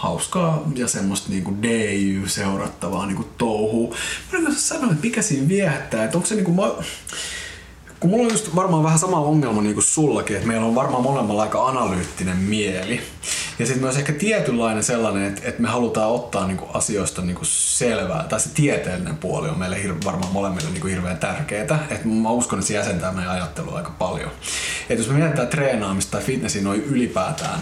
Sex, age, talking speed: male, 20-39, 175 wpm